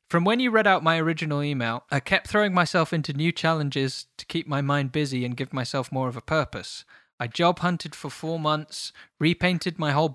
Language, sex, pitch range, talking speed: English, male, 135-165 Hz, 215 wpm